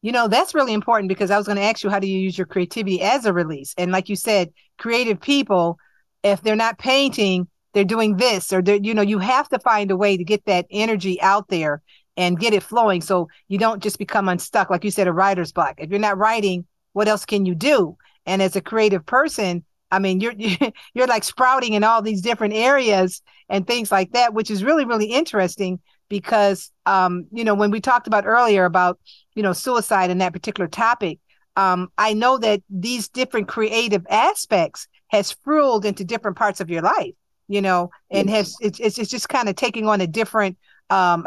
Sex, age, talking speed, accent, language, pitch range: female, 50-69, 215 wpm, American, English, 185-220 Hz